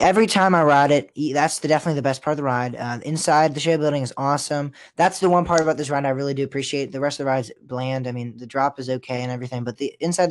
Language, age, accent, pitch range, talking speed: English, 10-29, American, 125-150 Hz, 285 wpm